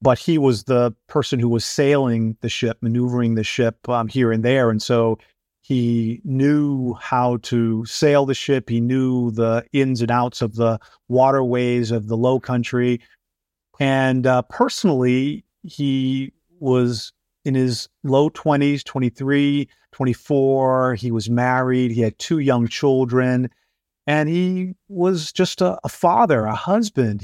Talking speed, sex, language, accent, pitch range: 150 wpm, male, English, American, 120-140 Hz